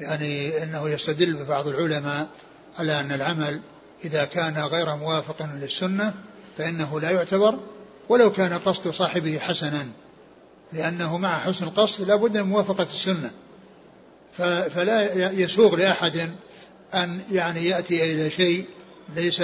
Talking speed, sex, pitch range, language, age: 115 wpm, male, 160-180 Hz, Arabic, 60-79